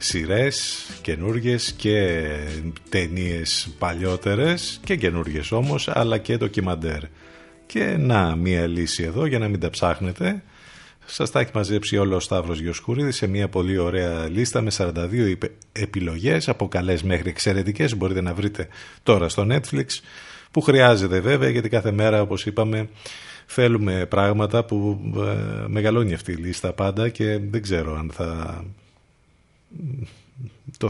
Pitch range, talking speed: 90-115 Hz, 135 wpm